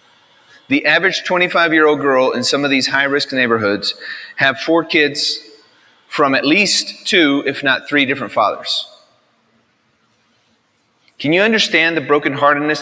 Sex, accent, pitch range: male, American, 130-165 Hz